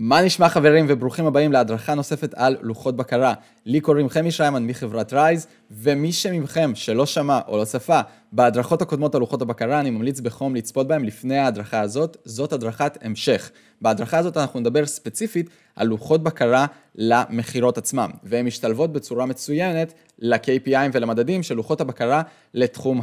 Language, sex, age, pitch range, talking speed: Hebrew, male, 20-39, 115-155 Hz, 155 wpm